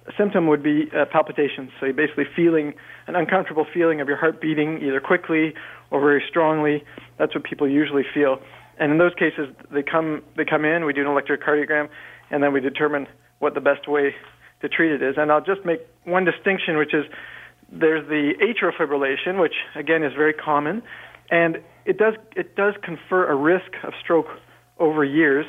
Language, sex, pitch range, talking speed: English, male, 140-160 Hz, 190 wpm